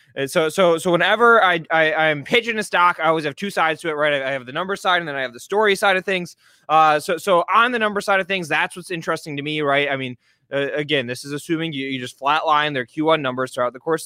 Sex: male